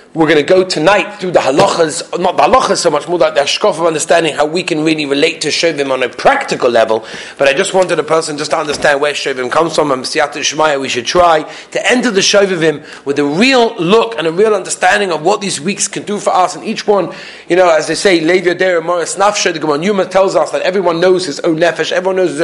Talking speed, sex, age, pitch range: 230 wpm, male, 30-49, 145-185 Hz